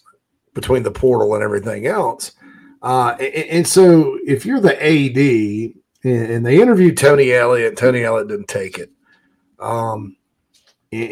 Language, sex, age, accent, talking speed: English, male, 40-59, American, 145 wpm